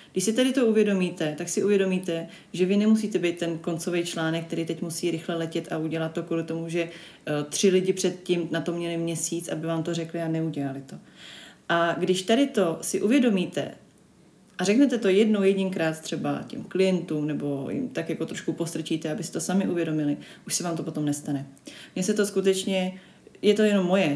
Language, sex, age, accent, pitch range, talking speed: Czech, female, 30-49, native, 160-185 Hz, 195 wpm